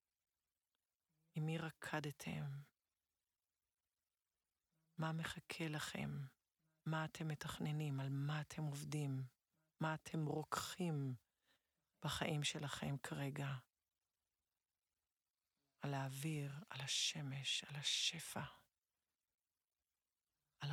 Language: Hebrew